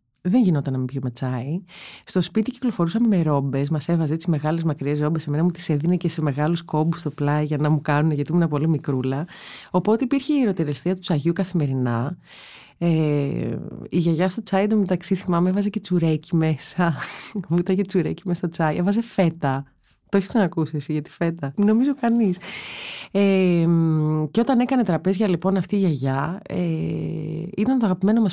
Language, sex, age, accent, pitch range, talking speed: Greek, female, 30-49, native, 150-195 Hz, 180 wpm